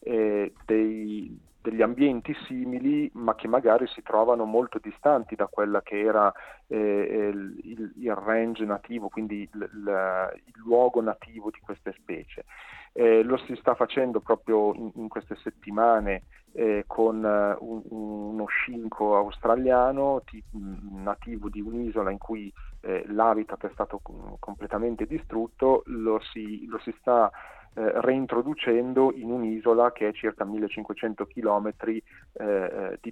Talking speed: 120 wpm